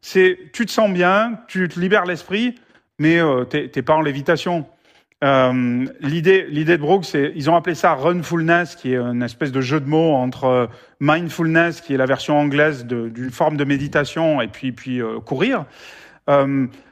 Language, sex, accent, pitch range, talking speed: French, male, French, 135-180 Hz, 205 wpm